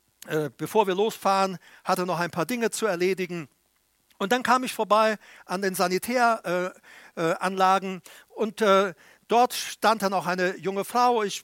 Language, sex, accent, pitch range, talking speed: German, male, German, 175-220 Hz, 165 wpm